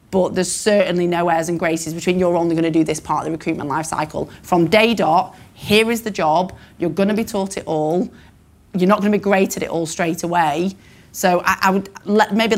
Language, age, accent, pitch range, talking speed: English, 30-49, British, 165-195 Hz, 225 wpm